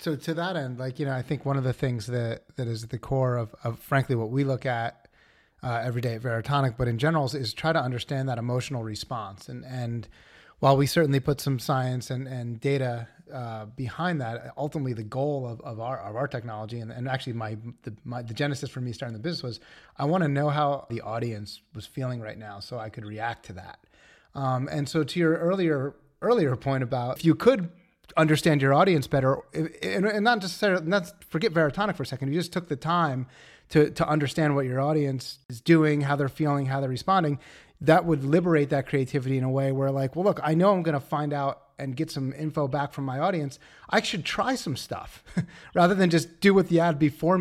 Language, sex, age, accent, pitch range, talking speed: English, male, 30-49, American, 130-160 Hz, 230 wpm